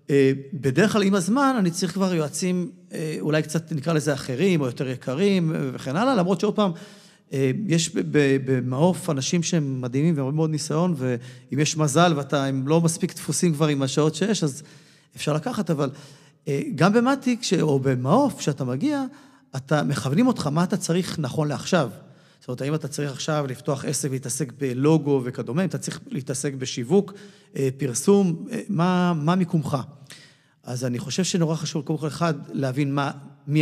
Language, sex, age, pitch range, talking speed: Hebrew, male, 40-59, 140-170 Hz, 160 wpm